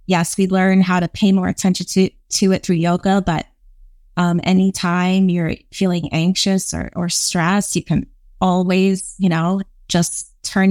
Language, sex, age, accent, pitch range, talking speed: English, female, 20-39, American, 170-200 Hz, 160 wpm